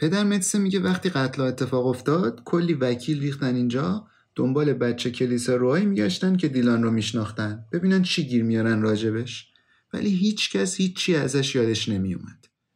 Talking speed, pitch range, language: 155 wpm, 120-165 Hz, Persian